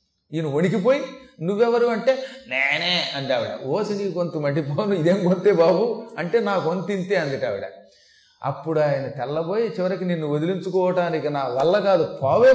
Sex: male